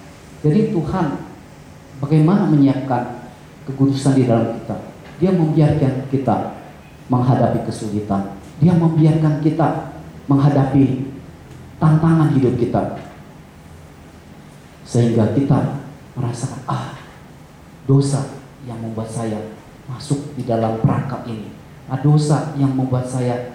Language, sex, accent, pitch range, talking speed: English, male, Indonesian, 115-145 Hz, 95 wpm